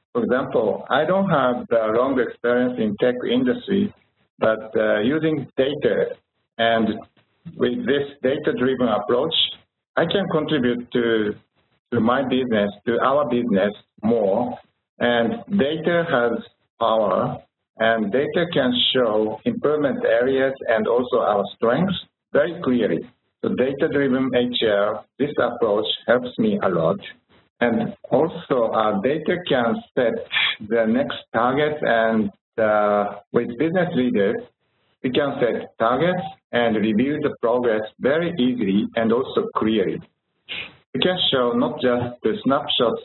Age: 60-79